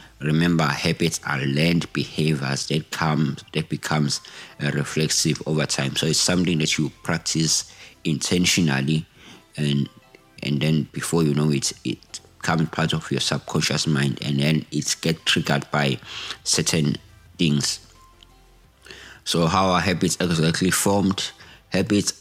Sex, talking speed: male, 130 wpm